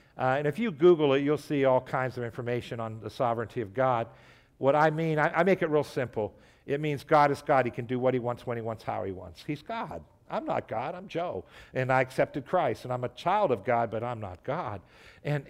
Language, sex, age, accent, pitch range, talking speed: English, male, 60-79, American, 120-155 Hz, 250 wpm